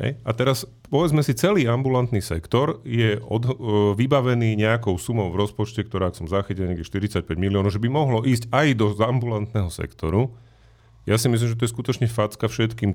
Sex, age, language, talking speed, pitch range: male, 30-49, Slovak, 180 wpm, 95-120 Hz